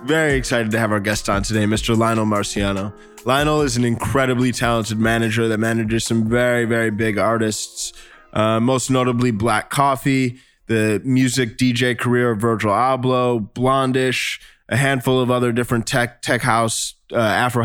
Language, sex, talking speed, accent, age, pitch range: English, male, 160 wpm, American, 20-39, 115-130 Hz